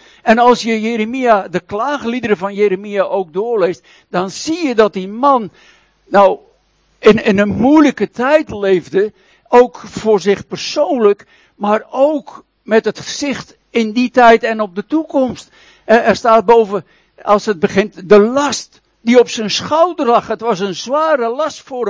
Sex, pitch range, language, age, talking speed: male, 215-275 Hz, Dutch, 60-79, 160 wpm